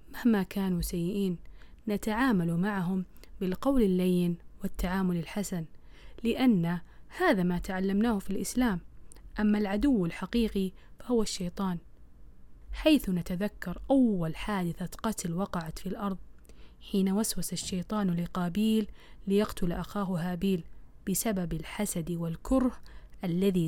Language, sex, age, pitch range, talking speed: Arabic, female, 20-39, 175-205 Hz, 100 wpm